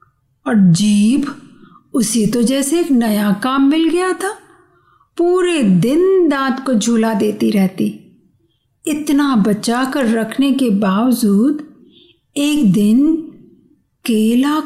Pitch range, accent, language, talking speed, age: 225-300 Hz, native, Hindi, 110 wpm, 50-69